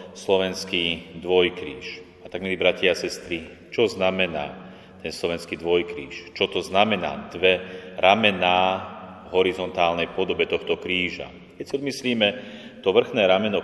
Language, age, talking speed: Slovak, 30-49, 130 wpm